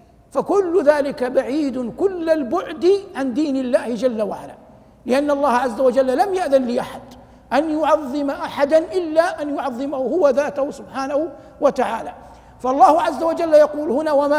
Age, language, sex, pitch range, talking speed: 50-69, Arabic, male, 245-305 Hz, 140 wpm